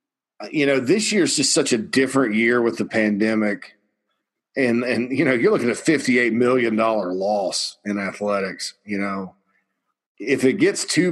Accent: American